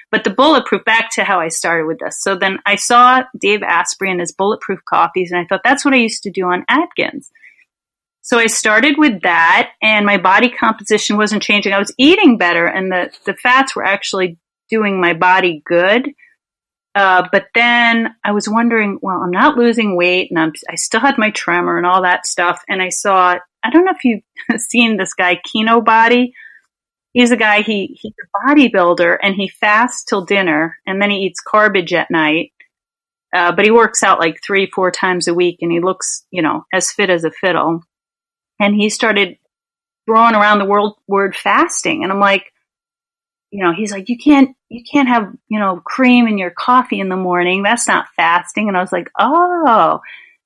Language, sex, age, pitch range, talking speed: English, female, 30-49, 185-240 Hz, 200 wpm